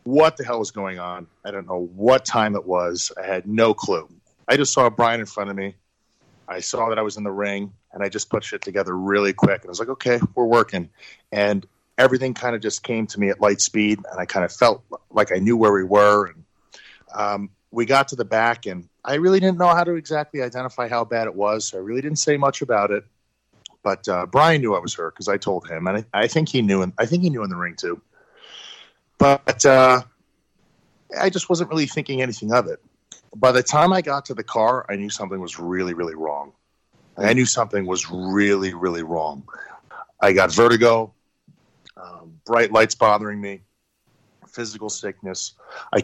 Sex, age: male, 30-49